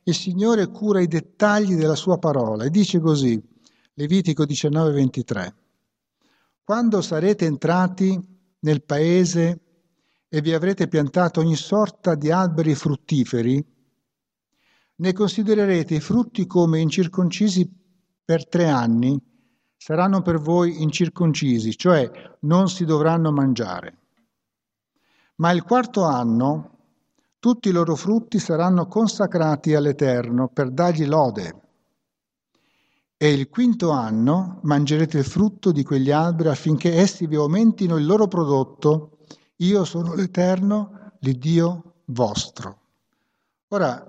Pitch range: 145-185 Hz